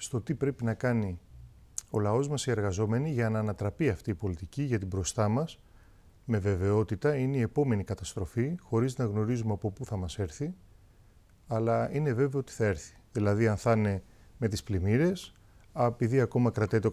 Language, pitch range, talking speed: Greek, 105-145 Hz, 180 wpm